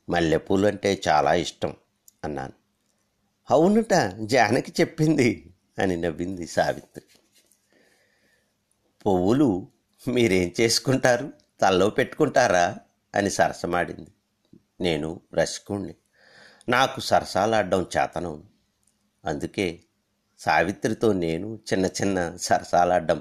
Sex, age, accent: male, 50-69, native